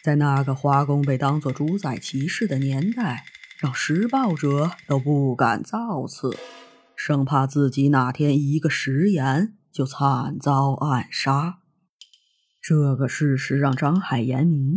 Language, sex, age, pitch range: Chinese, female, 20-39, 135-165 Hz